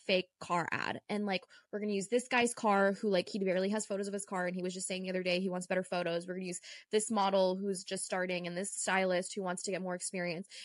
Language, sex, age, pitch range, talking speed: English, female, 10-29, 190-240 Hz, 280 wpm